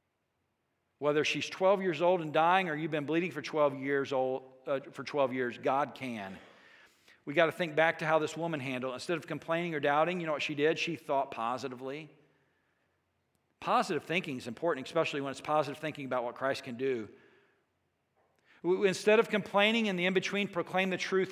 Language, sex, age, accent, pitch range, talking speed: Italian, male, 50-69, American, 150-210 Hz, 190 wpm